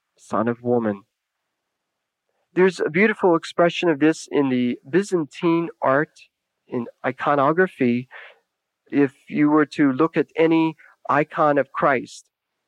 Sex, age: male, 40-59